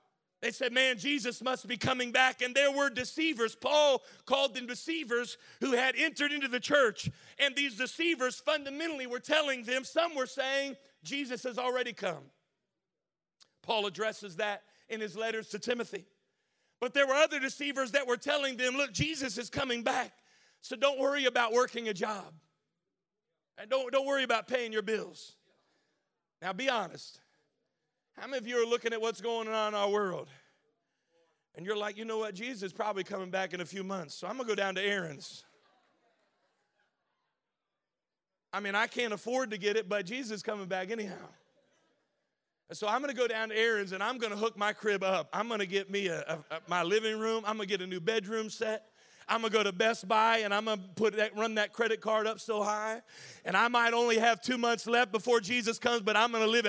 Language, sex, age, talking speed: English, male, 40-59, 210 wpm